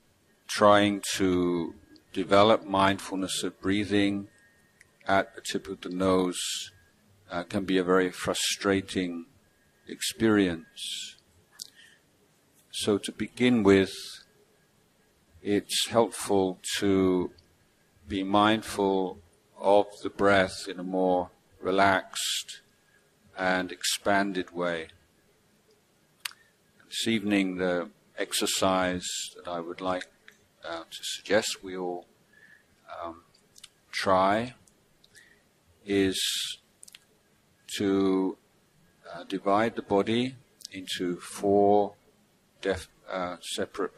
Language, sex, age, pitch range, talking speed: English, male, 50-69, 95-105 Hz, 85 wpm